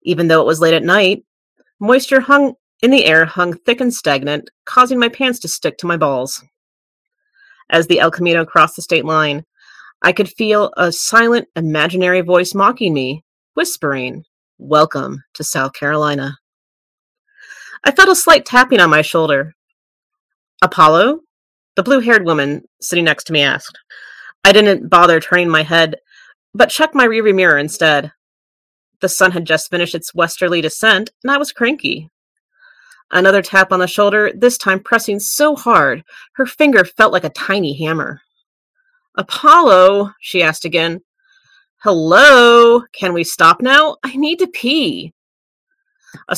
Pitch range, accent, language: 165-255 Hz, American, English